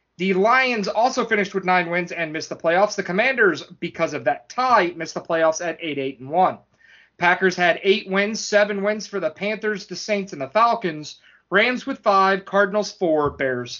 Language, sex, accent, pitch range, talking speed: English, male, American, 170-220 Hz, 190 wpm